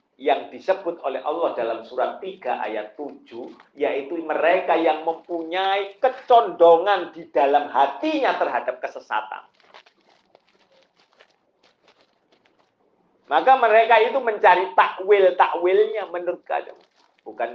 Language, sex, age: Indonesian, male, 50-69